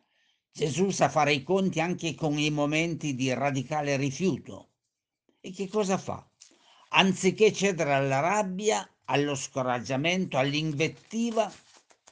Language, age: Italian, 60-79